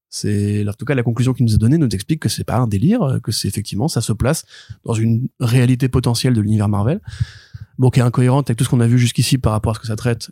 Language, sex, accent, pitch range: French, male, French, 115-140 Hz